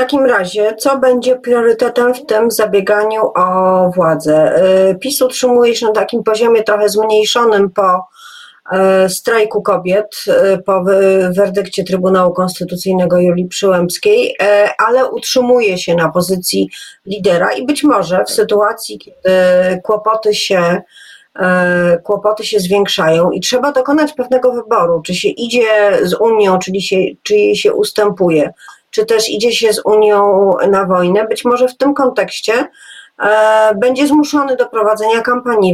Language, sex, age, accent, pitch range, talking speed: Polish, female, 40-59, native, 185-235 Hz, 135 wpm